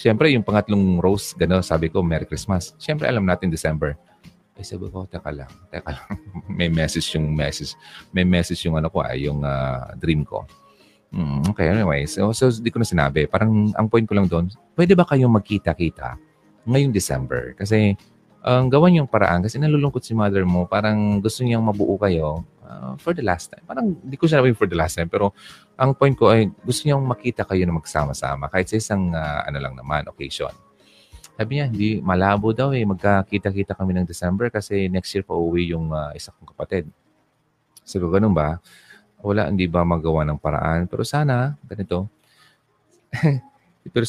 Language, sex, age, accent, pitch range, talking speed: Filipino, male, 30-49, native, 85-115 Hz, 185 wpm